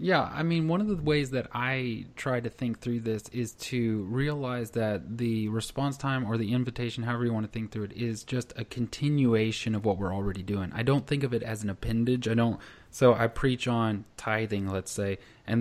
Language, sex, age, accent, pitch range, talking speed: English, male, 20-39, American, 110-125 Hz, 225 wpm